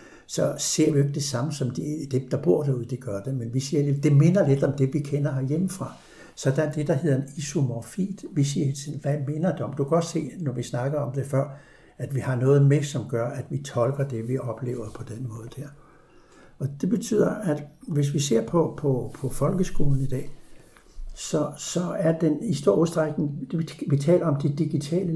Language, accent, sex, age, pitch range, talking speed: Danish, native, male, 60-79, 130-155 Hz, 220 wpm